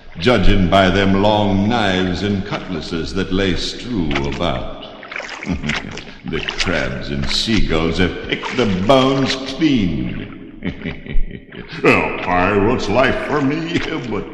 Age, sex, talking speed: 60-79, male, 110 wpm